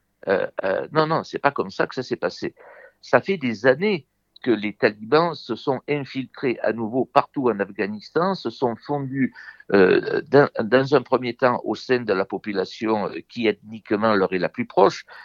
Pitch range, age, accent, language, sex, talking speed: 105-145 Hz, 60-79, French, French, male, 190 wpm